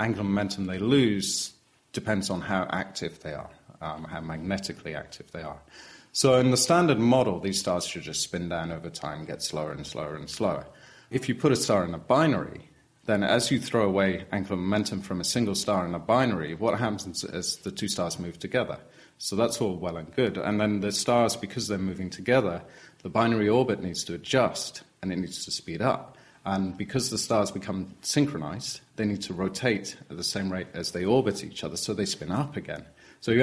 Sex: male